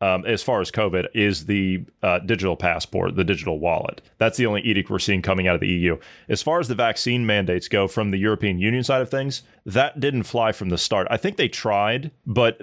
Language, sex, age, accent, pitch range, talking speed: English, male, 30-49, American, 100-125 Hz, 230 wpm